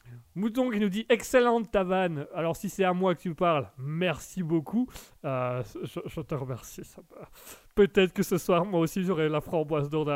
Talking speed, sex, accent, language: 205 wpm, male, French, French